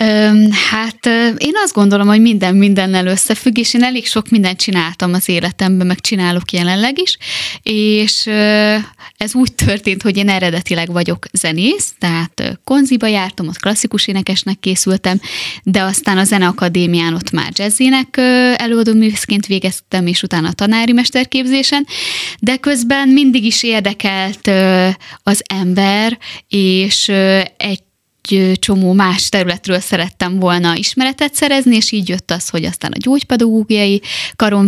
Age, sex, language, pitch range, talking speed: 20-39, female, Hungarian, 190-240 Hz, 130 wpm